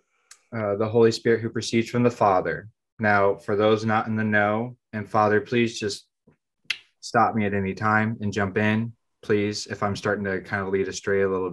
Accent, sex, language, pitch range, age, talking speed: American, male, English, 100-110 Hz, 20-39, 205 wpm